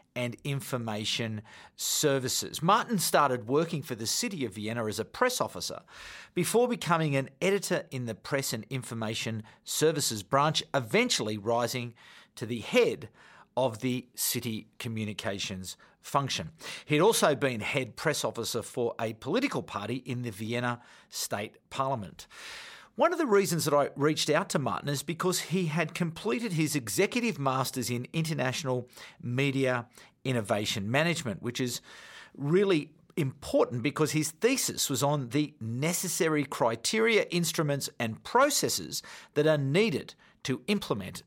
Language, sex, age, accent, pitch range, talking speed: English, male, 50-69, Australian, 120-165 Hz, 135 wpm